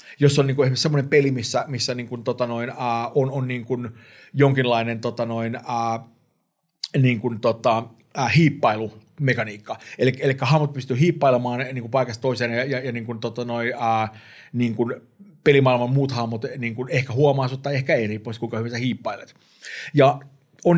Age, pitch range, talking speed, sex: 30-49, 120-140 Hz, 190 wpm, male